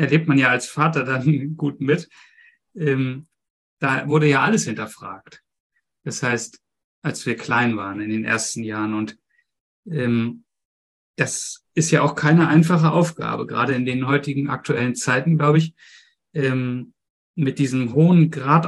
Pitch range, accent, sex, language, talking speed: 130-160 Hz, German, male, German, 150 wpm